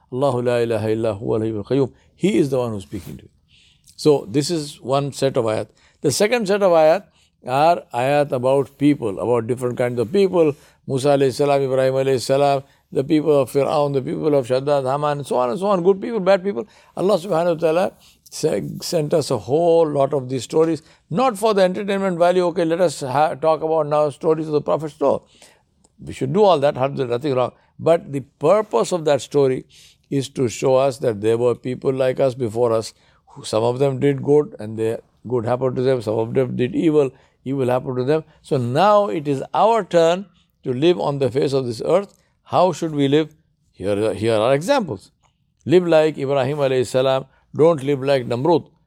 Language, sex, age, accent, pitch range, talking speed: English, male, 60-79, Indian, 125-160 Hz, 195 wpm